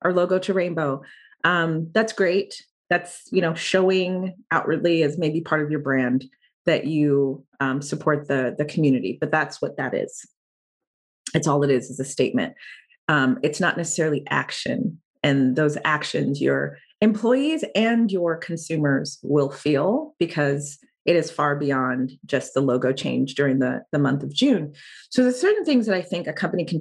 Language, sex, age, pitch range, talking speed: English, female, 30-49, 140-175 Hz, 170 wpm